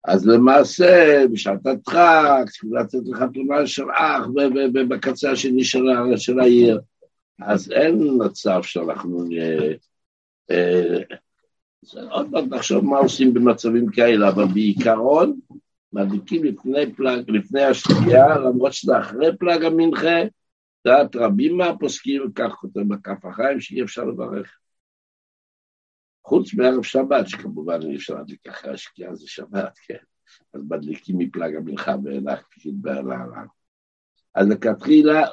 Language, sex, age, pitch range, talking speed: Hebrew, male, 60-79, 90-135 Hz, 120 wpm